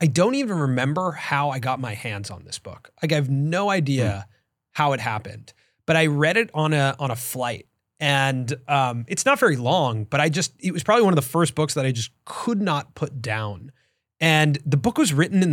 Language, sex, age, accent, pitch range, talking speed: English, male, 30-49, American, 120-160 Hz, 230 wpm